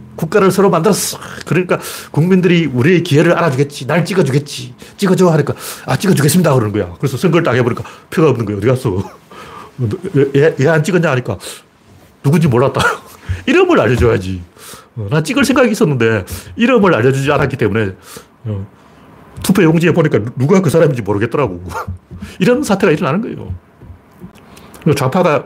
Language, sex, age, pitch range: Korean, male, 40-59, 120-175 Hz